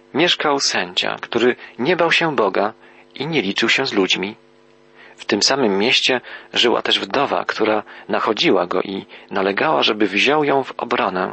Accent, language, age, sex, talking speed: native, Polish, 40-59, male, 160 wpm